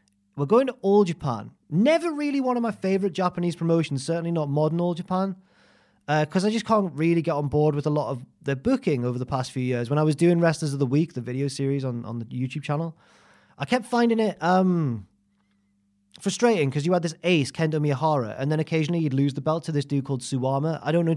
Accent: British